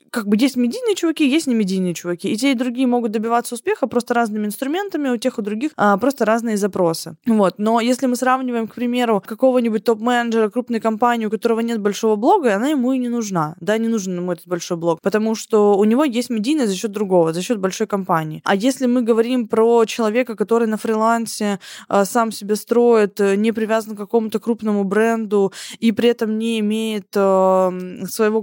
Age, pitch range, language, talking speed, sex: 20-39, 200-245 Hz, Russian, 190 wpm, female